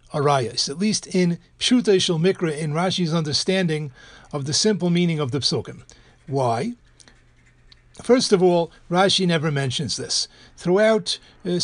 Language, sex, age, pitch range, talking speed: English, male, 60-79, 145-190 Hz, 135 wpm